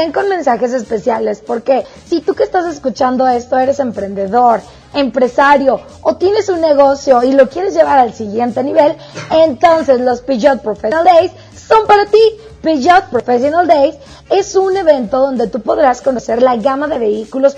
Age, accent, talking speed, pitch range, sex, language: 20-39, Mexican, 155 wpm, 255-320 Hz, female, Spanish